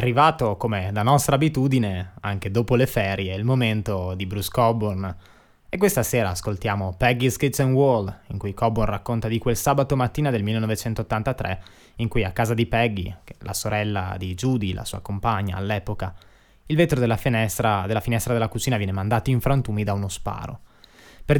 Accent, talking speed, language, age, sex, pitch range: native, 170 wpm, Italian, 20-39, male, 100-120 Hz